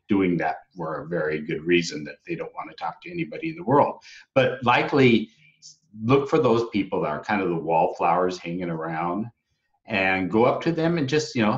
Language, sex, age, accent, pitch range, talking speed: English, male, 50-69, American, 95-125 Hz, 210 wpm